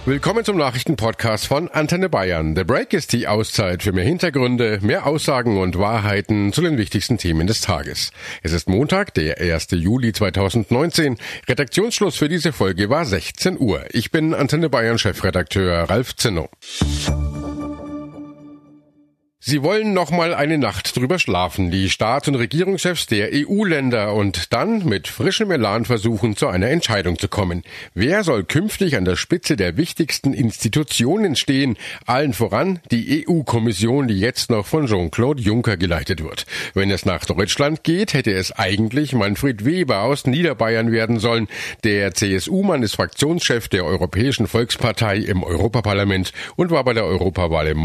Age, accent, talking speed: 50-69, German, 150 wpm